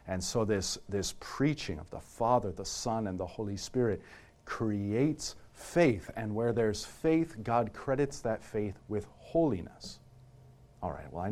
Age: 50-69